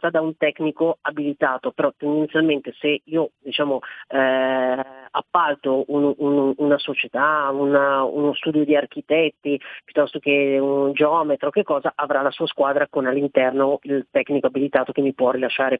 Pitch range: 140-180 Hz